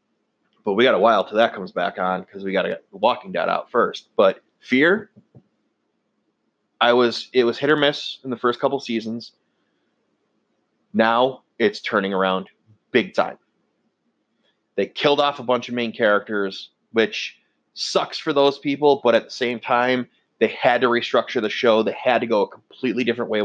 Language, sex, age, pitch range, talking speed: English, male, 30-49, 110-125 Hz, 180 wpm